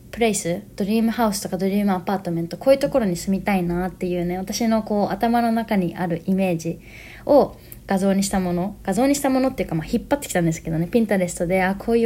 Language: Japanese